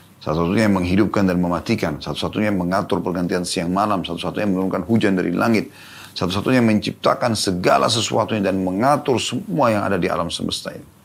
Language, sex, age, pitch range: Indonesian, male, 30-49, 90-115 Hz